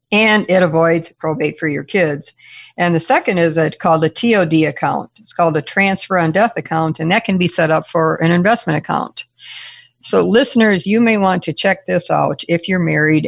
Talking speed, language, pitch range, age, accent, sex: 200 wpm, English, 155-185 Hz, 50-69, American, female